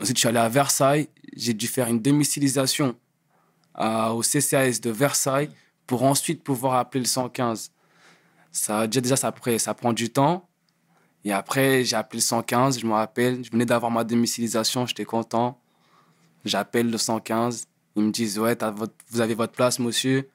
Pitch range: 115-140 Hz